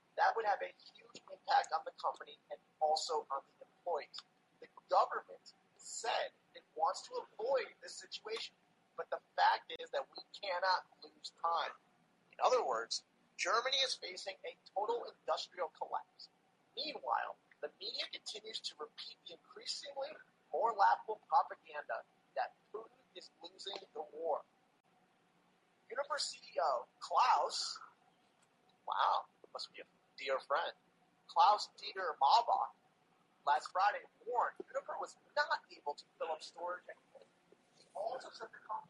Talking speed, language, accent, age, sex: 135 wpm, English, American, 30-49, male